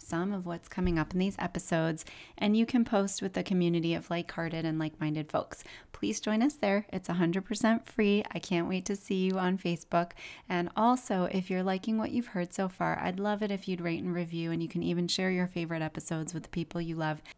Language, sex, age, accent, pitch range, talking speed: English, female, 30-49, American, 165-195 Hz, 230 wpm